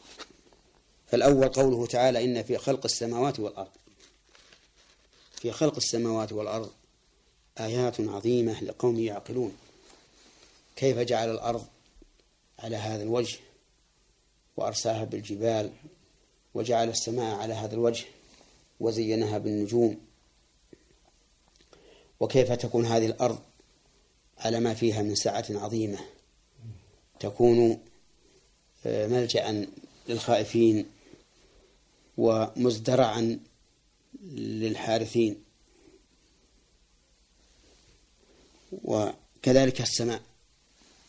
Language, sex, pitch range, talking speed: Arabic, male, 110-120 Hz, 70 wpm